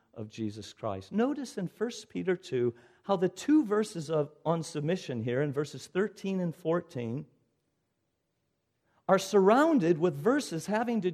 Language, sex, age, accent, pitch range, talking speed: English, male, 50-69, American, 155-225 Hz, 140 wpm